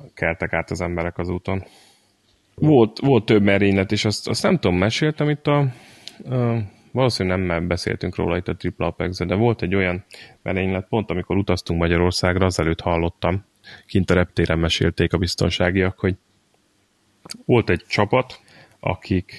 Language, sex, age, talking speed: Hungarian, male, 30-49, 150 wpm